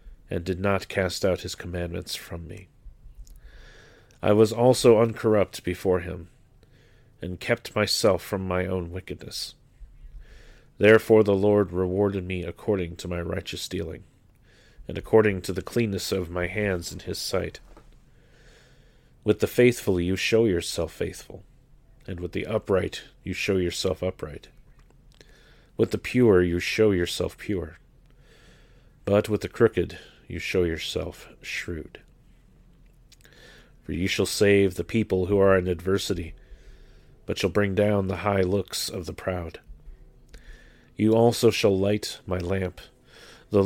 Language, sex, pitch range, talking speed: English, male, 90-110 Hz, 135 wpm